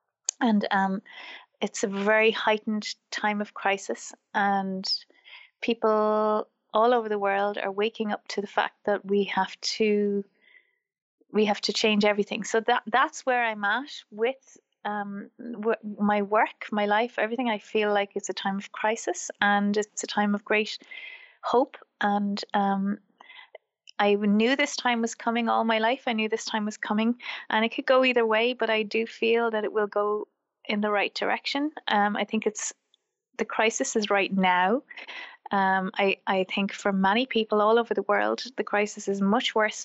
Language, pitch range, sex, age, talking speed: English, 205-235 Hz, female, 30-49, 180 wpm